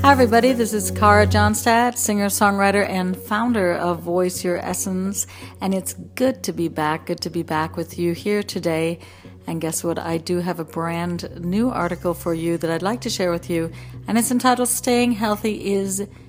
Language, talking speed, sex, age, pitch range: English, 195 wpm, female, 50-69, 165-210 Hz